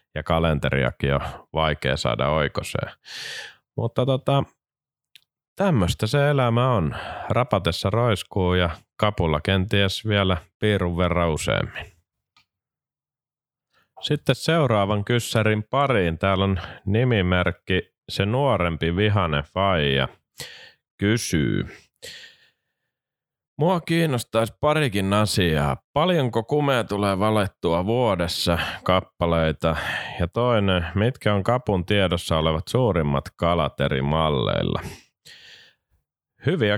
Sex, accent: male, native